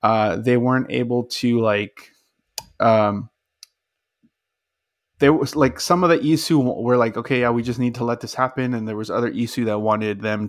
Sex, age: male, 20-39